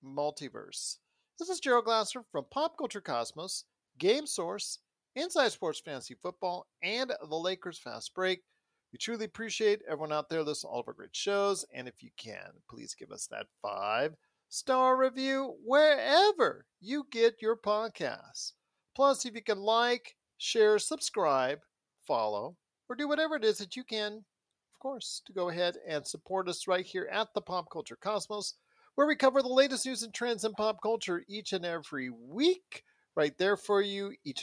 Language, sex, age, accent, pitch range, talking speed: English, male, 40-59, American, 185-260 Hz, 175 wpm